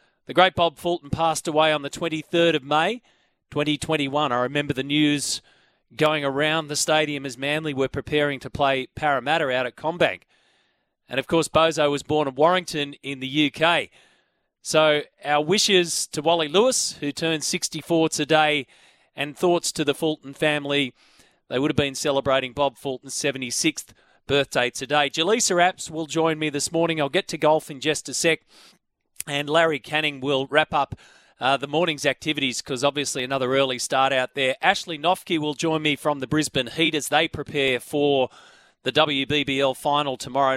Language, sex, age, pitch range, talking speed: English, male, 30-49, 140-165 Hz, 170 wpm